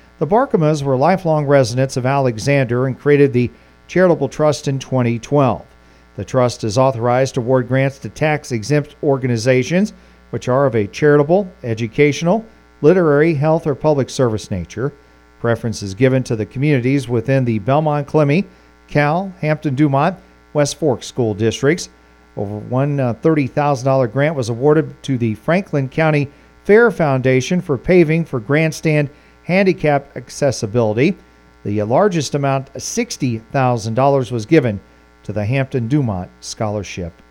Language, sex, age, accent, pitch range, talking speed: English, male, 40-59, American, 115-150 Hz, 140 wpm